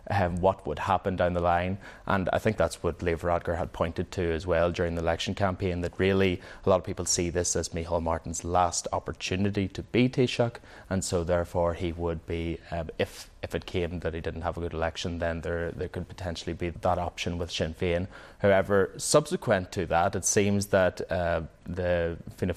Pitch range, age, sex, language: 85-95 Hz, 20-39, male, English